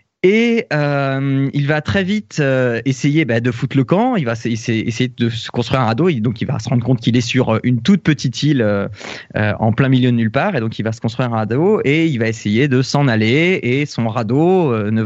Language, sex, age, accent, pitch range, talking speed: French, male, 20-39, French, 120-160 Hz, 260 wpm